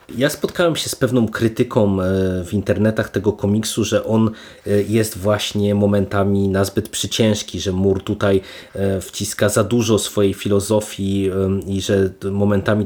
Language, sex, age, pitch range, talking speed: Polish, male, 30-49, 100-110 Hz, 130 wpm